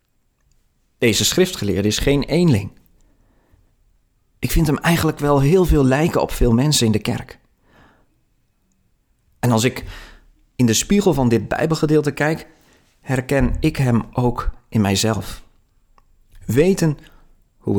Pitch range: 110-155 Hz